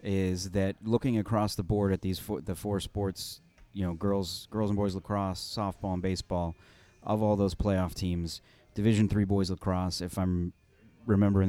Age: 30-49